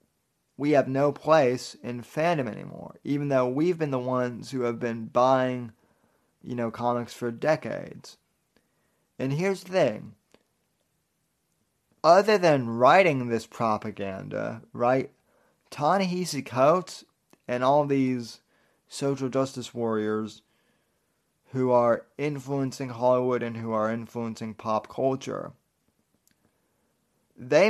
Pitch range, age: 120-145 Hz, 30-49